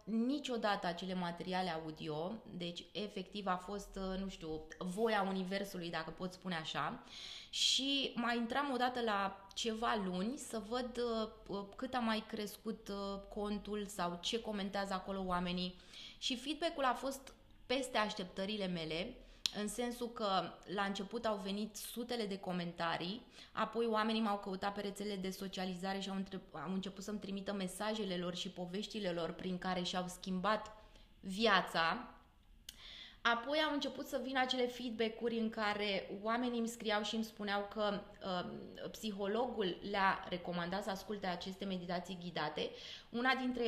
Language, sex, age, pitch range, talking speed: Romanian, female, 20-39, 185-225 Hz, 140 wpm